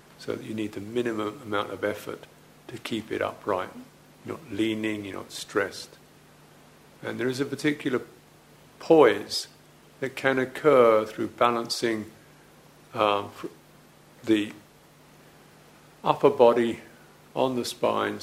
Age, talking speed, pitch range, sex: 50-69, 120 wpm, 105-120 Hz, male